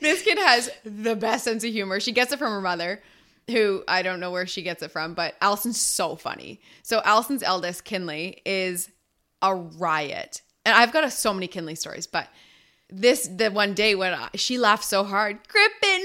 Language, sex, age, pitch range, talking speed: English, female, 20-39, 180-235 Hz, 200 wpm